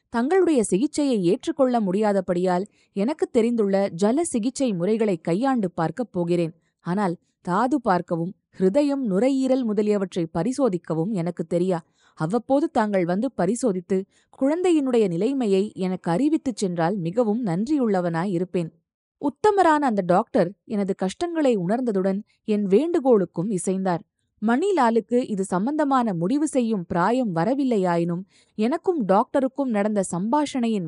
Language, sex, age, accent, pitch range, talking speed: Tamil, female, 20-39, native, 180-250 Hz, 100 wpm